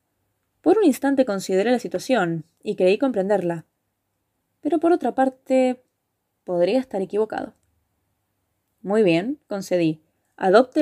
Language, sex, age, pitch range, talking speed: Spanish, female, 20-39, 185-270 Hz, 110 wpm